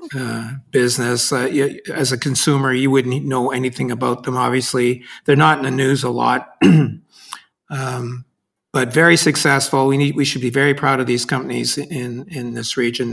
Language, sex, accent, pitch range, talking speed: English, male, American, 125-145 Hz, 180 wpm